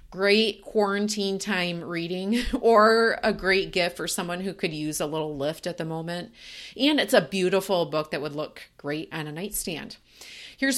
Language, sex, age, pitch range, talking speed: English, female, 30-49, 175-220 Hz, 180 wpm